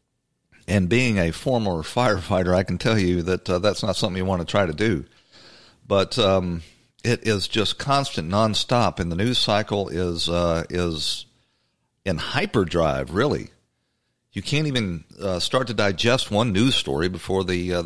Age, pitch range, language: 50-69, 95-125 Hz, English